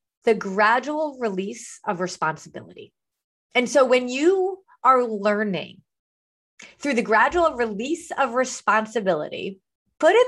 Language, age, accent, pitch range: English, 30-49, American, 195-275 Hz